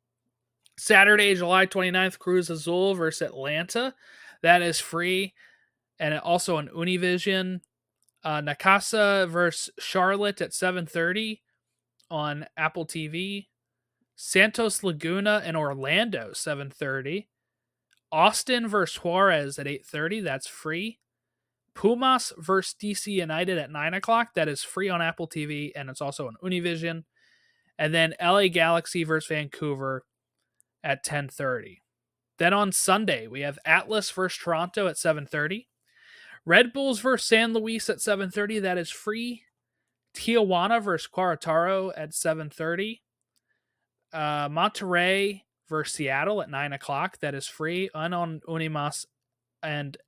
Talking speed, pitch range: 120 wpm, 150-195 Hz